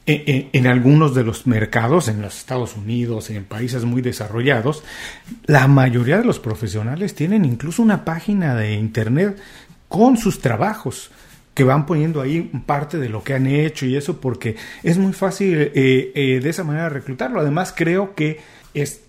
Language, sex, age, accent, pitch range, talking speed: Spanish, male, 40-59, Mexican, 130-165 Hz, 175 wpm